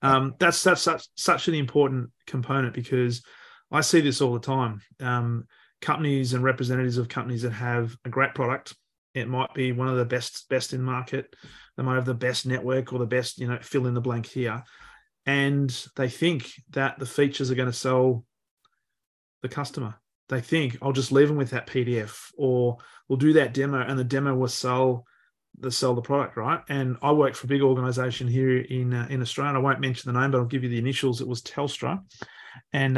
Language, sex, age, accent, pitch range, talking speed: English, male, 30-49, Australian, 125-145 Hz, 210 wpm